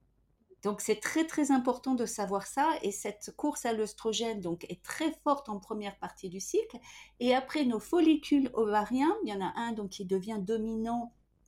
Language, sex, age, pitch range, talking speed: French, female, 40-59, 205-285 Hz, 190 wpm